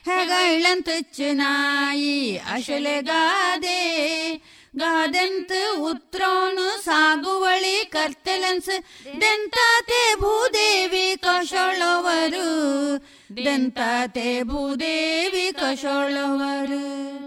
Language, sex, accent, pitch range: Kannada, female, native, 275-355 Hz